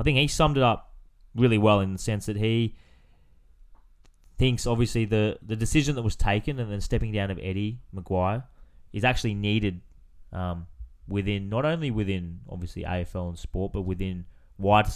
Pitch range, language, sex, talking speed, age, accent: 90-105 Hz, English, male, 175 wpm, 20-39, Australian